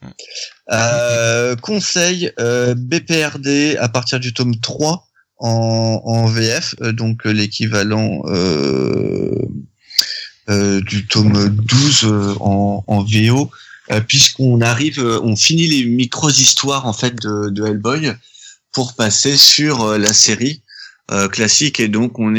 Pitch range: 105-125 Hz